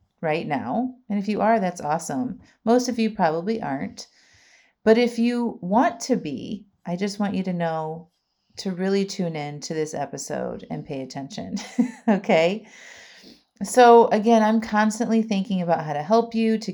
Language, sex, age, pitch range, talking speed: English, female, 30-49, 155-220 Hz, 170 wpm